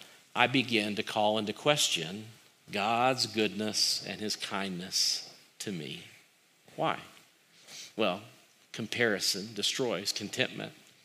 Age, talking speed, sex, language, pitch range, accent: 40-59, 100 wpm, male, English, 110-130 Hz, American